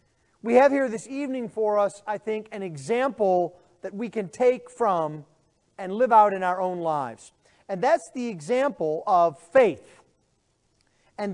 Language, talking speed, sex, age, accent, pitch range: English, 160 wpm, male, 40-59, American, 195-270 Hz